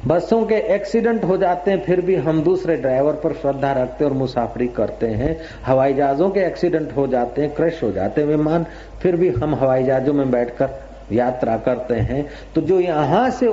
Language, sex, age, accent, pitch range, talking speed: Hindi, male, 50-69, native, 125-160 Hz, 195 wpm